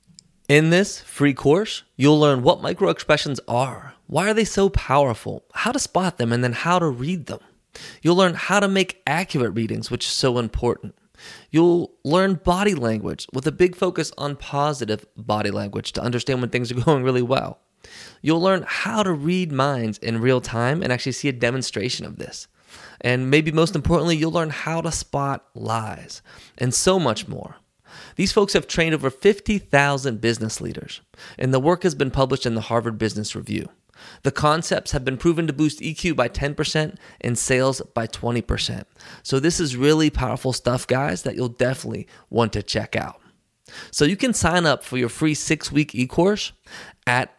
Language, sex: English, male